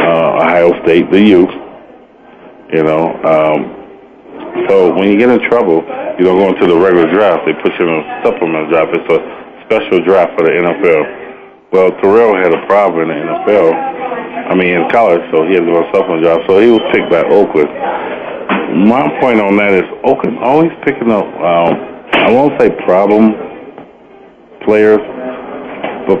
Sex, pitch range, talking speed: male, 85-115 Hz, 170 wpm